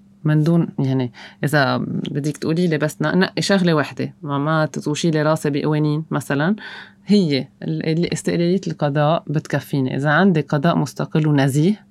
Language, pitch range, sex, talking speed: Arabic, 145-185 Hz, female, 125 wpm